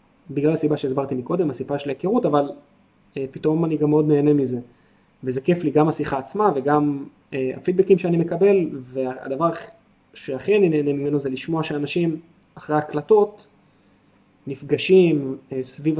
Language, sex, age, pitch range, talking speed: Hebrew, male, 20-39, 135-160 Hz, 145 wpm